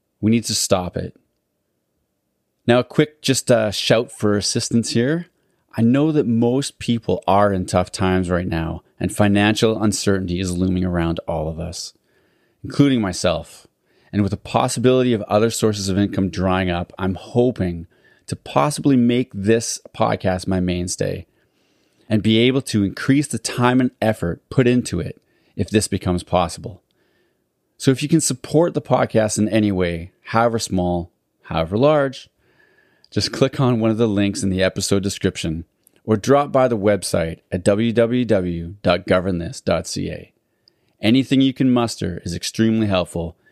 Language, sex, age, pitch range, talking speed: English, male, 30-49, 90-120 Hz, 150 wpm